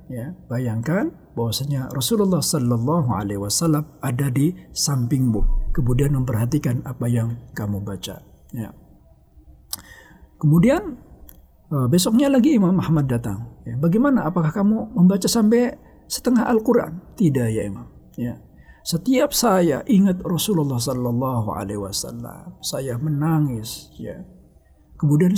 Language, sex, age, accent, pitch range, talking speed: Indonesian, male, 50-69, native, 105-170 Hz, 110 wpm